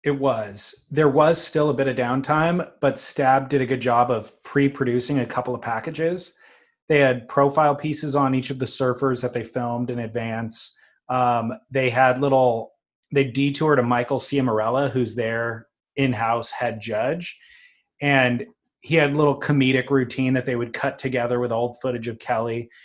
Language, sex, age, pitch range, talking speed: English, male, 30-49, 120-140 Hz, 175 wpm